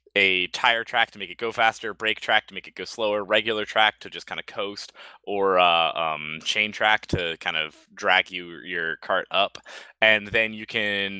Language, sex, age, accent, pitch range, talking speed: English, male, 20-39, American, 85-115 Hz, 200 wpm